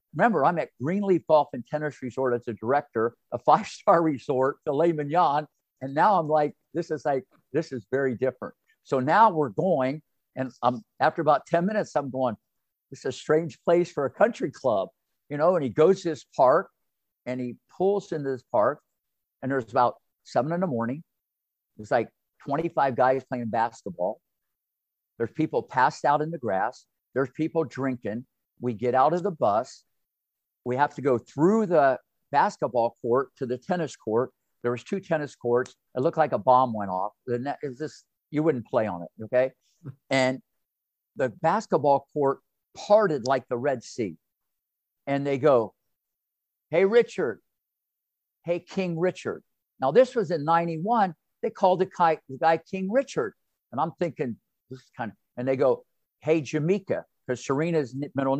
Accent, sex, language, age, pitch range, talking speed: American, male, English, 50-69, 130-165 Hz, 165 wpm